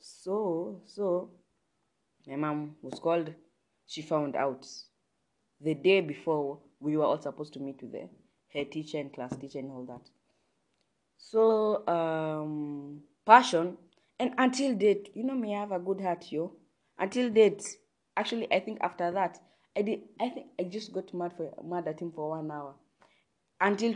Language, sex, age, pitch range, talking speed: English, female, 20-39, 155-205 Hz, 165 wpm